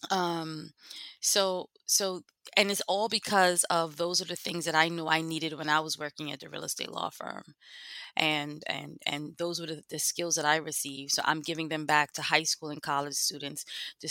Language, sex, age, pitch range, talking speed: English, female, 20-39, 155-170 Hz, 215 wpm